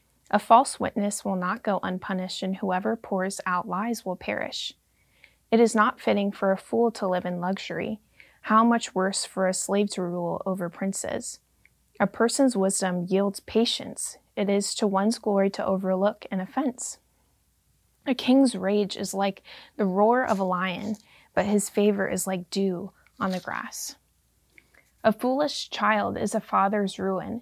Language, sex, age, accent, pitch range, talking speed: English, female, 20-39, American, 190-225 Hz, 165 wpm